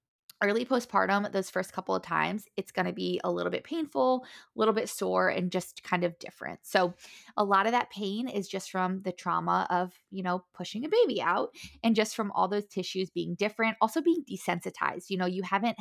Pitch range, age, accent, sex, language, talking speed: 180-225 Hz, 20-39, American, female, English, 215 wpm